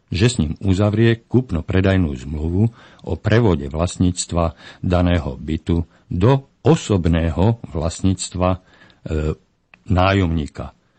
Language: Slovak